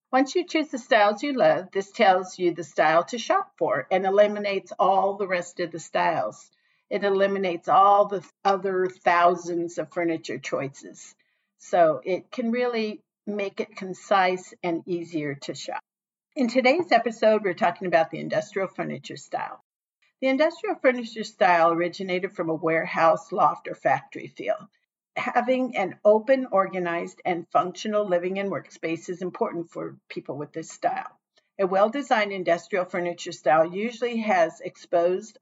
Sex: female